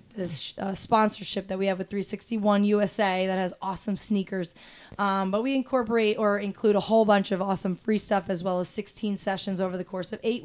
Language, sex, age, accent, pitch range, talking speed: English, female, 20-39, American, 190-210 Hz, 205 wpm